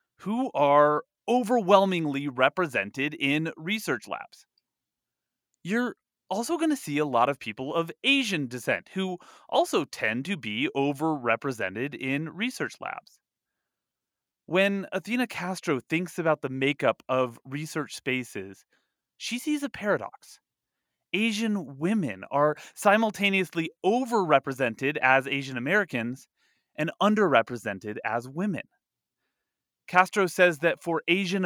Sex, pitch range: male, 130-185 Hz